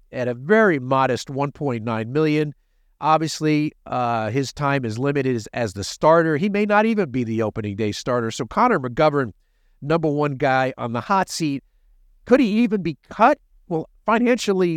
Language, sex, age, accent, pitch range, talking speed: English, male, 50-69, American, 135-185 Hz, 170 wpm